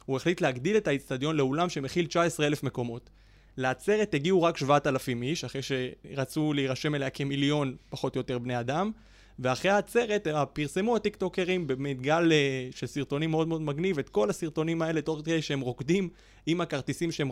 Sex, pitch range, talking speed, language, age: male, 135-180 Hz, 155 wpm, Hebrew, 20-39